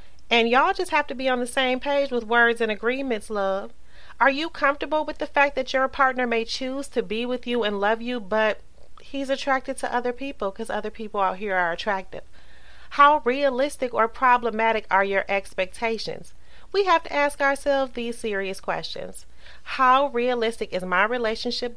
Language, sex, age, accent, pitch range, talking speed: English, female, 30-49, American, 200-265 Hz, 180 wpm